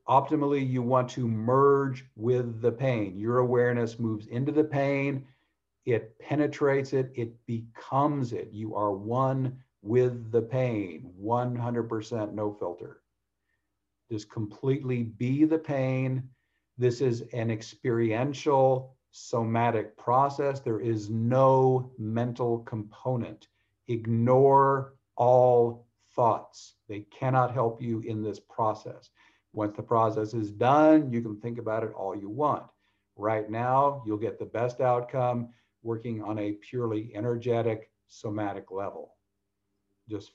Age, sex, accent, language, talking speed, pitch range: 50-69, male, American, English, 125 wpm, 110-130 Hz